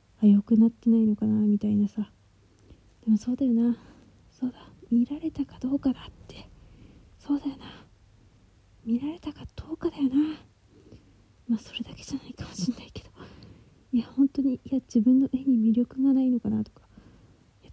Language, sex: Japanese, female